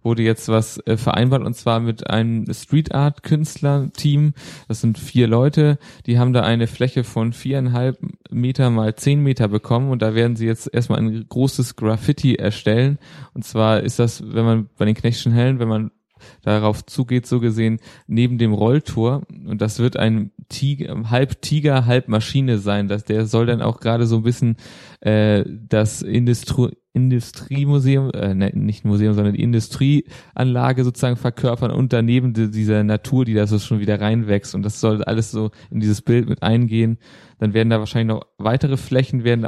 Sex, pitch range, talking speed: male, 110-130 Hz, 165 wpm